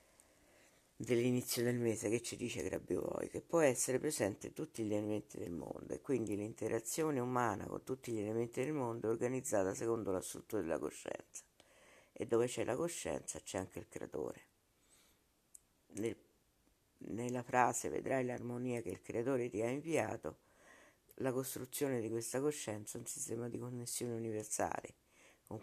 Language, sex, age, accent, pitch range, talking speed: Italian, female, 50-69, native, 105-125 Hz, 150 wpm